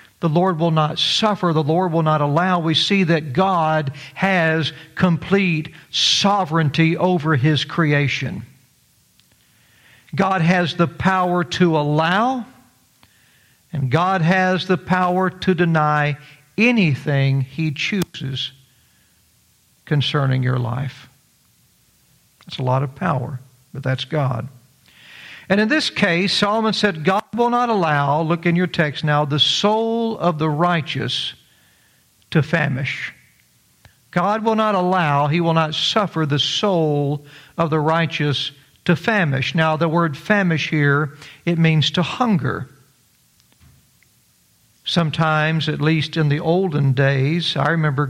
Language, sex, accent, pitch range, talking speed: English, male, American, 140-175 Hz, 125 wpm